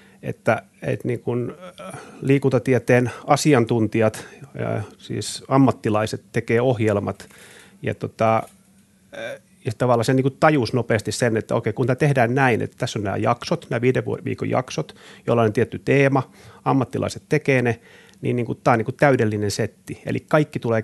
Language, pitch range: Finnish, 110-135 Hz